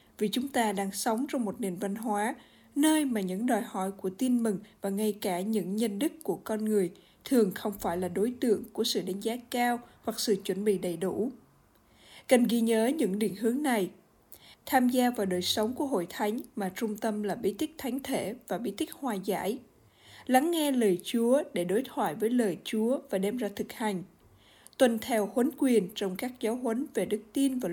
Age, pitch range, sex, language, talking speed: 20-39, 200-255 Hz, female, Vietnamese, 215 wpm